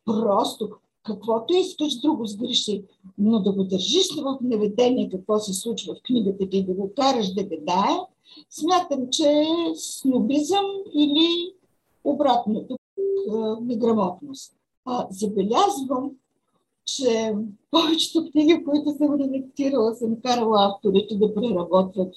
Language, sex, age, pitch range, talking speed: Bulgarian, female, 50-69, 205-270 Hz, 120 wpm